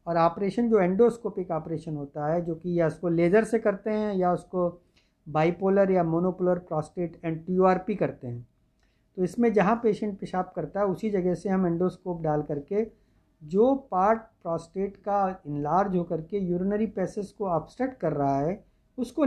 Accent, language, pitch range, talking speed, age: native, Hindi, 160-210 Hz, 170 wpm, 50-69